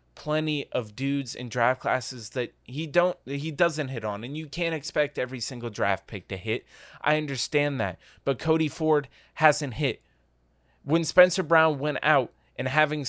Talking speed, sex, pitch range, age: 180 wpm, male, 125-150 Hz, 20-39